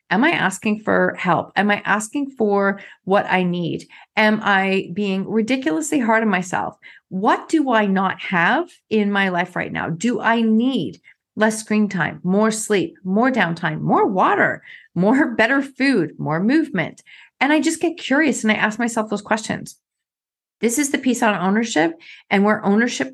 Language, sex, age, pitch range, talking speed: English, female, 30-49, 190-235 Hz, 170 wpm